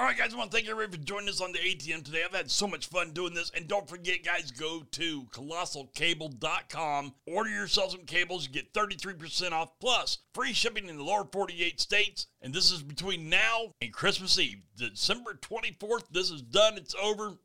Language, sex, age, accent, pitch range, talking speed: English, male, 40-59, American, 150-200 Hz, 205 wpm